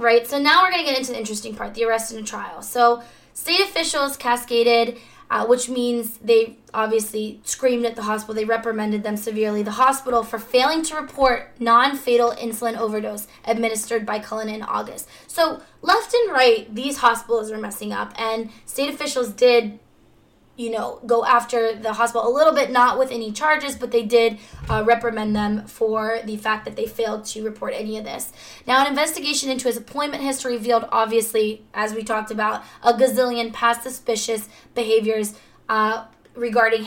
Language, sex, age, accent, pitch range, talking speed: English, female, 20-39, American, 225-255 Hz, 180 wpm